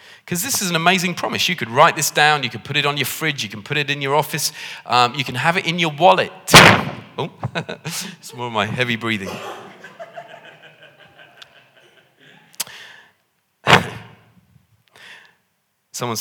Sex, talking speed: male, 150 wpm